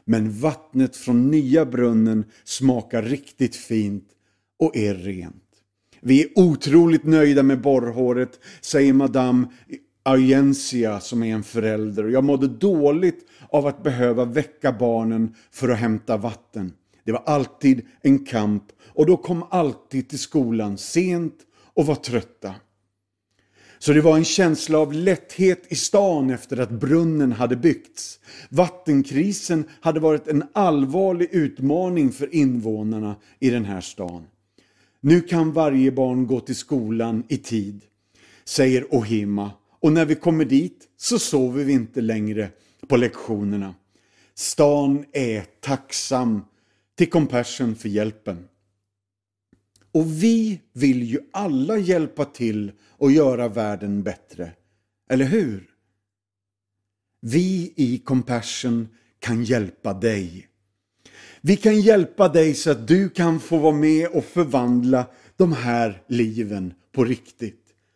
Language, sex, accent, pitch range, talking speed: Swedish, male, native, 105-150 Hz, 125 wpm